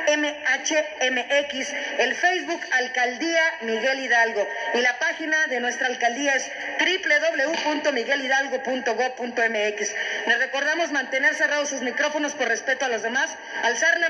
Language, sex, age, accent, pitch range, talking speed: Spanish, female, 40-59, Mexican, 255-310 Hz, 115 wpm